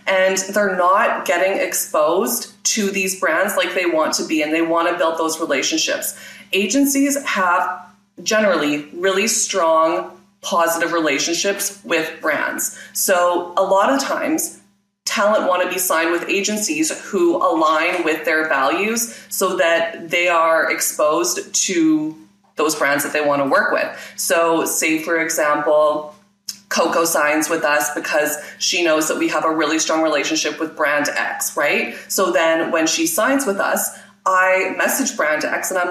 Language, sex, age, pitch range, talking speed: English, female, 20-39, 160-200 Hz, 160 wpm